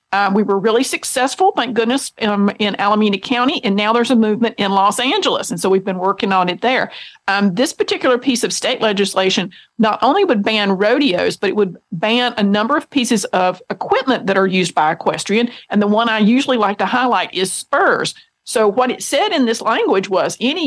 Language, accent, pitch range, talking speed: English, American, 200-260 Hz, 210 wpm